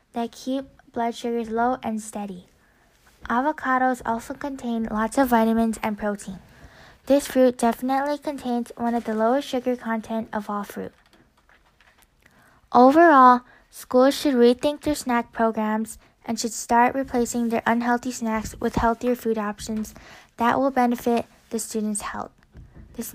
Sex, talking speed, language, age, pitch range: female, 135 wpm, English, 10-29, 225-255 Hz